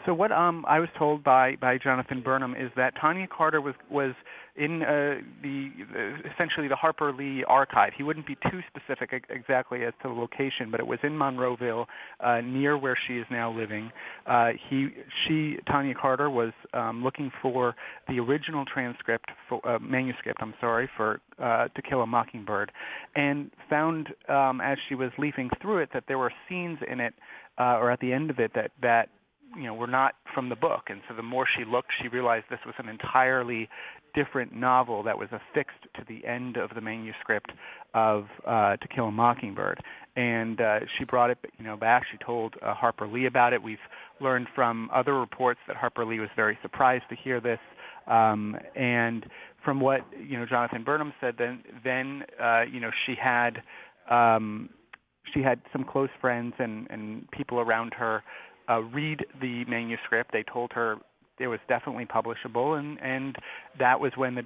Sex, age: male, 40-59